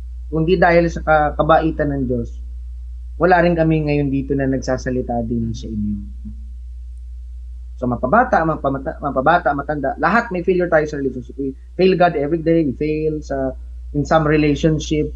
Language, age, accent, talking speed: Filipino, 20-39, native, 150 wpm